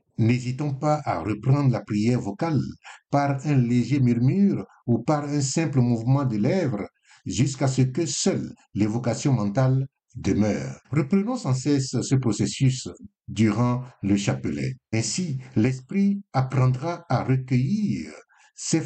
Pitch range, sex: 120-155 Hz, male